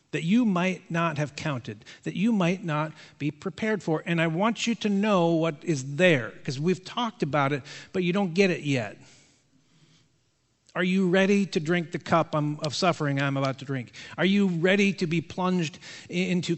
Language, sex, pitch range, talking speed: English, male, 160-205 Hz, 190 wpm